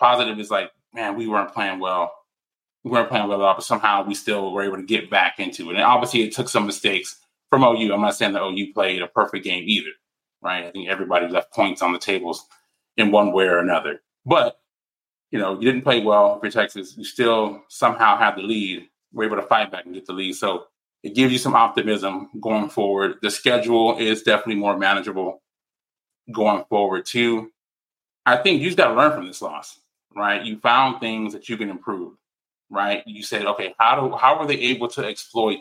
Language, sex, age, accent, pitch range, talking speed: English, male, 20-39, American, 100-115 Hz, 215 wpm